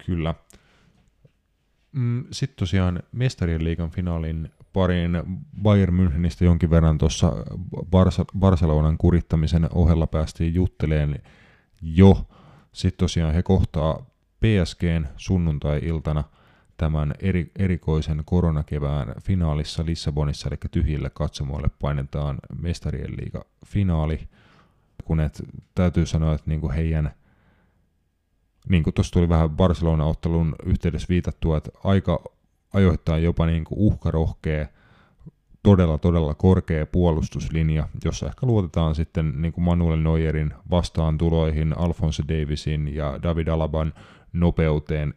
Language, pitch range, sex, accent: Finnish, 80-90 Hz, male, native